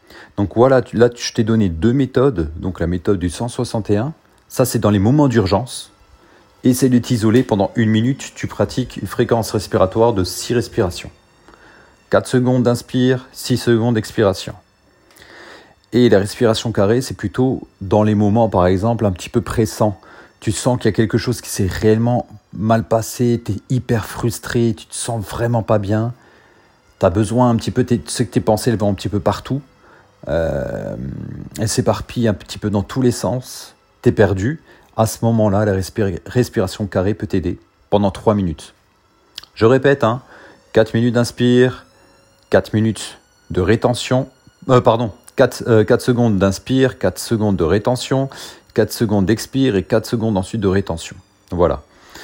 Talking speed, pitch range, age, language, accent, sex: 170 wpm, 105-125 Hz, 40-59, French, French, male